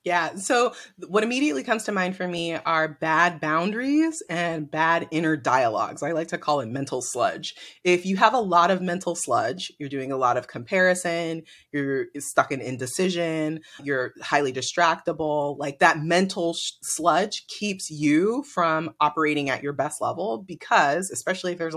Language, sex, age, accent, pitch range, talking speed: English, female, 30-49, American, 140-175 Hz, 170 wpm